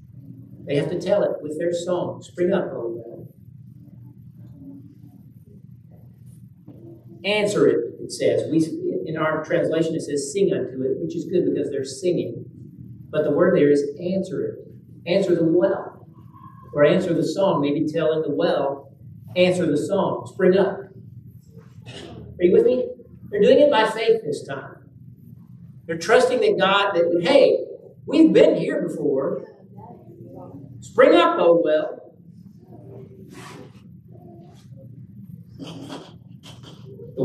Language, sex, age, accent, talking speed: English, male, 50-69, American, 130 wpm